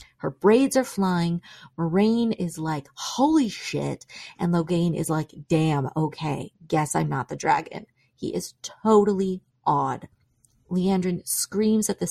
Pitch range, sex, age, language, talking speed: 140-180 Hz, female, 30-49, English, 140 wpm